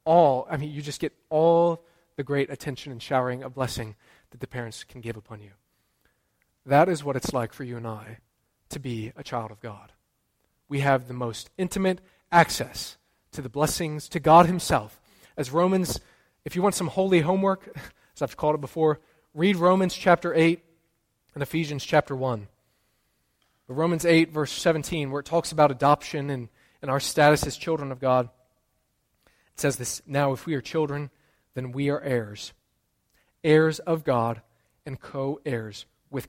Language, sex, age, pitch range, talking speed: English, male, 20-39, 125-165 Hz, 170 wpm